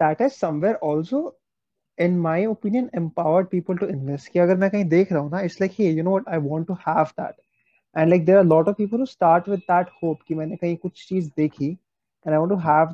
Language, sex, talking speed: Hindi, male, 250 wpm